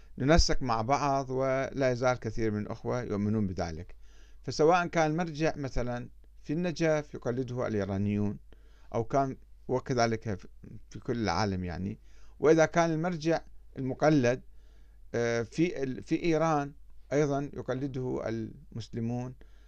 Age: 50-69